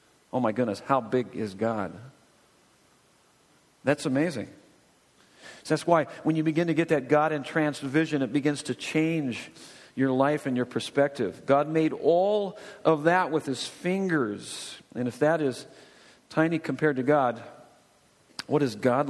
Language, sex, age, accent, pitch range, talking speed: English, male, 50-69, American, 145-185 Hz, 150 wpm